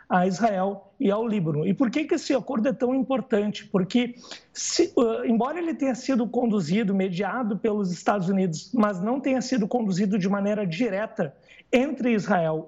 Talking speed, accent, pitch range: 160 wpm, Brazilian, 210-260 Hz